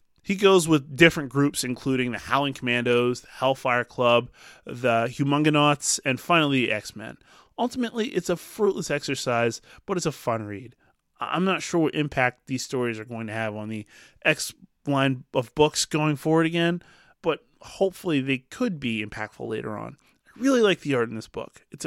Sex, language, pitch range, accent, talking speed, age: male, English, 115-160 Hz, American, 180 wpm, 20-39